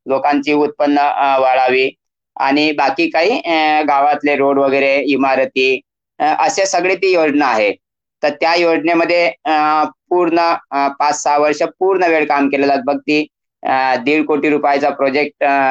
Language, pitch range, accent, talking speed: Marathi, 140-165 Hz, native, 100 wpm